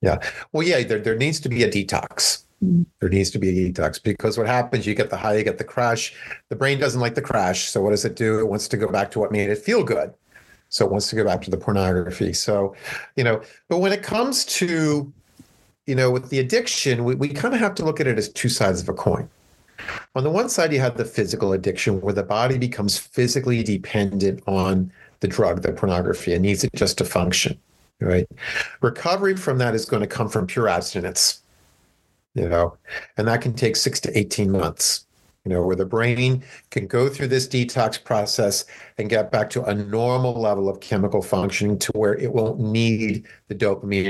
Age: 50-69